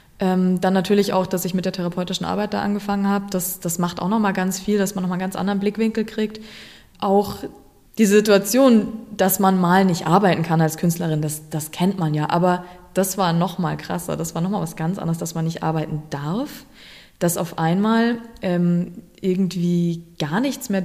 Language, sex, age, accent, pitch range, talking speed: German, female, 20-39, German, 175-210 Hz, 195 wpm